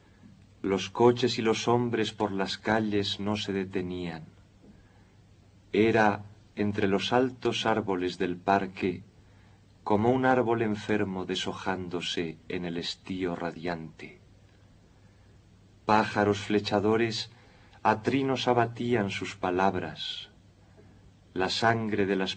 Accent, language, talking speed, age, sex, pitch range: Spanish, Spanish, 100 wpm, 40-59, male, 95-105 Hz